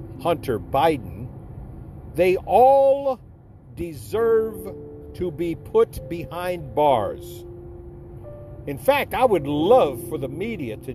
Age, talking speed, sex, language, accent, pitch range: 50-69, 105 wpm, male, English, American, 115-195 Hz